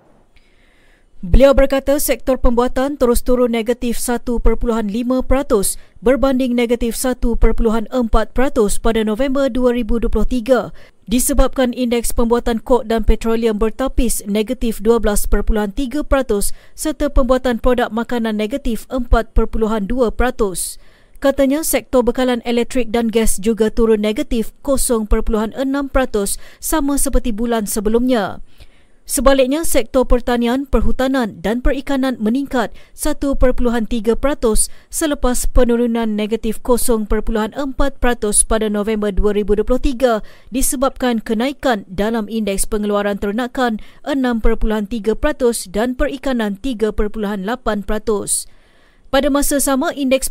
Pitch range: 225-260 Hz